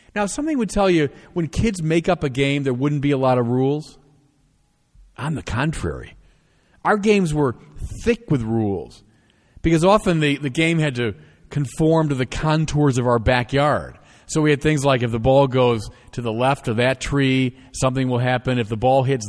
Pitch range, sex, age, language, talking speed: 115-165 Hz, male, 40-59, English, 195 wpm